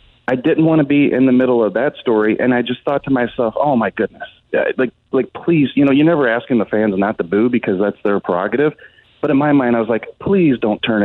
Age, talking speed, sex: 30-49, 255 wpm, male